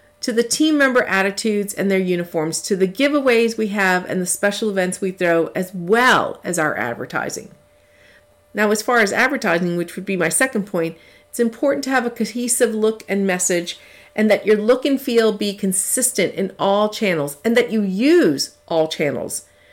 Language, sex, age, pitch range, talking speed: English, female, 50-69, 185-250 Hz, 185 wpm